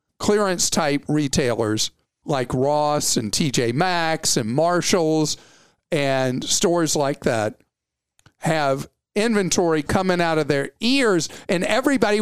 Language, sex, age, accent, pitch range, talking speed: English, male, 50-69, American, 145-205 Hz, 110 wpm